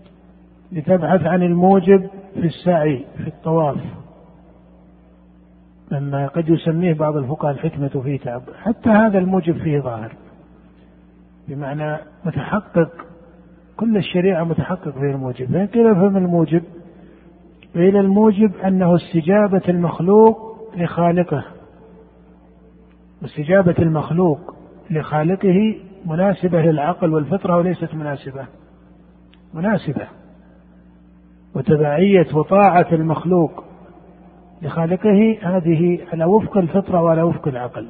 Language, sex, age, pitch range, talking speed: Arabic, male, 50-69, 145-185 Hz, 90 wpm